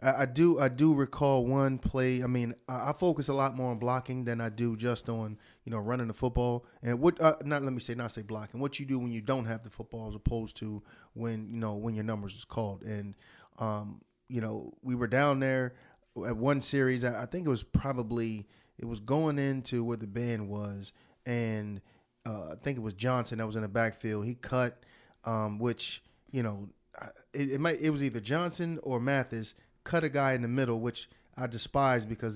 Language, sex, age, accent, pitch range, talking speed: English, male, 30-49, American, 115-135 Hz, 230 wpm